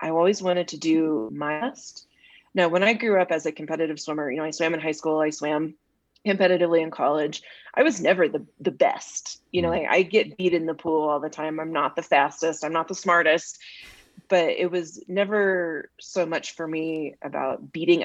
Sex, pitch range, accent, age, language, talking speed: female, 155-185 Hz, American, 30-49, English, 215 wpm